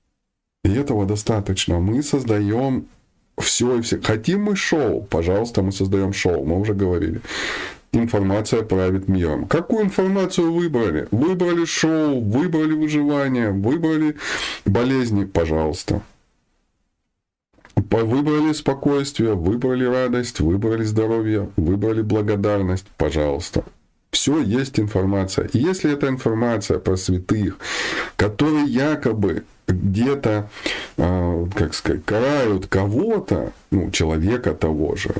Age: 20-39